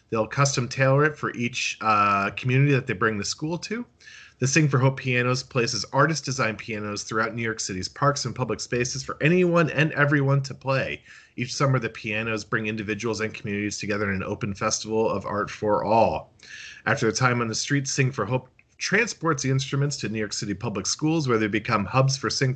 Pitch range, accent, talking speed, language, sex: 110-140 Hz, American, 210 wpm, English, male